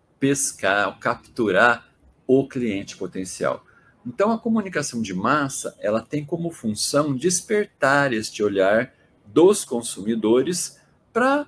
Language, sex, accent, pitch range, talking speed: Portuguese, male, Brazilian, 105-145 Hz, 105 wpm